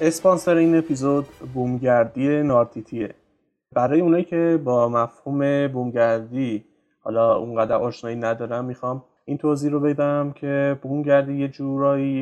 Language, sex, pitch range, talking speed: Persian, male, 120-145 Hz, 115 wpm